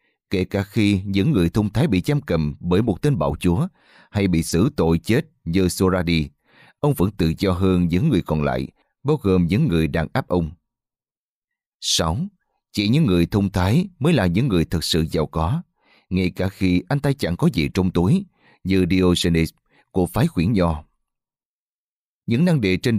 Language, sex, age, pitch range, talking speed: Vietnamese, male, 20-39, 85-125 Hz, 190 wpm